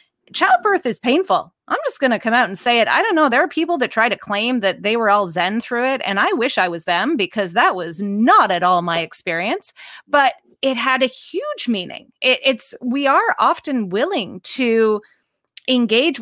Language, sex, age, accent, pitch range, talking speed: English, female, 30-49, American, 205-275 Hz, 205 wpm